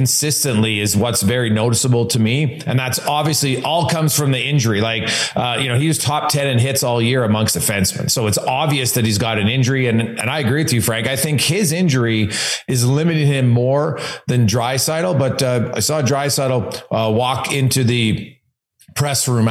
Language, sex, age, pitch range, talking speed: English, male, 30-49, 115-145 Hz, 200 wpm